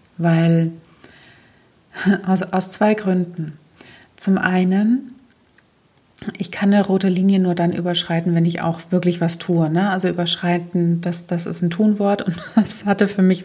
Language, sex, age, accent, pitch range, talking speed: German, female, 30-49, German, 170-195 Hz, 145 wpm